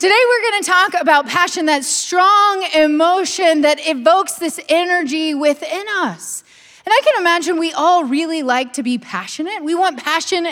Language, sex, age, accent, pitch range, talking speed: English, female, 30-49, American, 245-355 Hz, 165 wpm